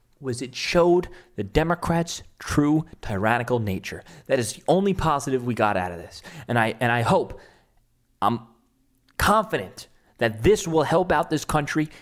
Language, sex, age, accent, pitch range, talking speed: English, male, 30-49, American, 100-130 Hz, 160 wpm